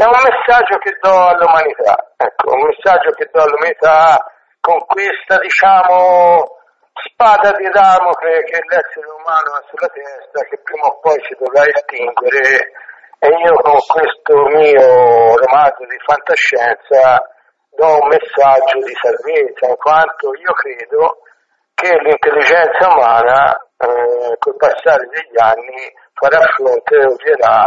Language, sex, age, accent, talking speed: Italian, male, 60-79, native, 130 wpm